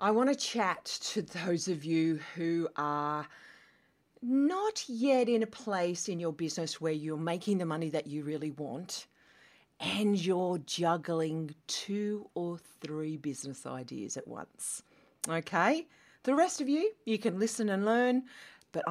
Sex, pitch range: female, 155-215 Hz